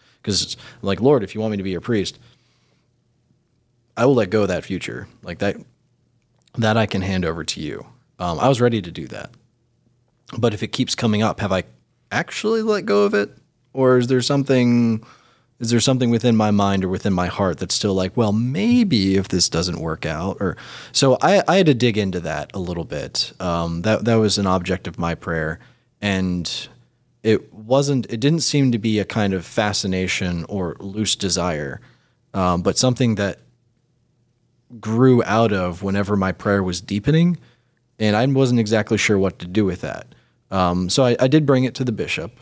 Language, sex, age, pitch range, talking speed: English, male, 20-39, 95-120 Hz, 200 wpm